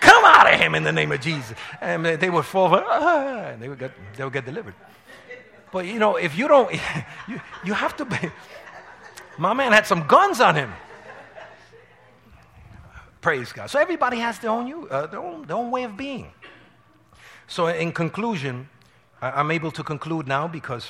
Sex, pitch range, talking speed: male, 145-205 Hz, 160 wpm